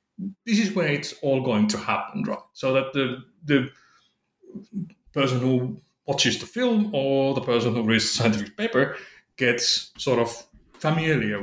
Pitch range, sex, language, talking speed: 120-190 Hz, male, English, 155 wpm